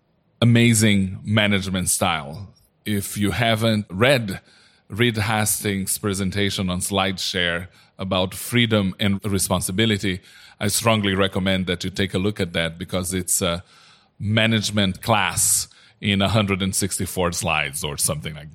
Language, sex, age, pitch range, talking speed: English, male, 30-49, 100-120 Hz, 120 wpm